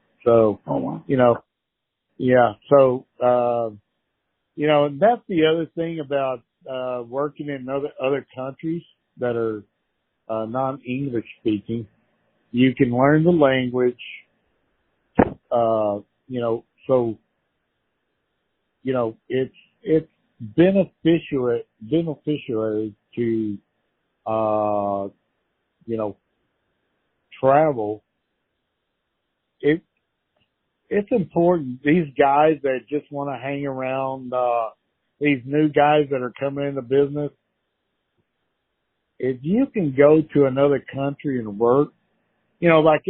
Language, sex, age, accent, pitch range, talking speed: English, male, 50-69, American, 120-160 Hz, 105 wpm